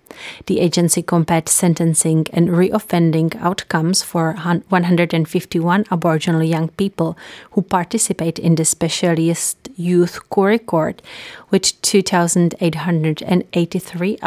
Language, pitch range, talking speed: English, 165-195 Hz, 95 wpm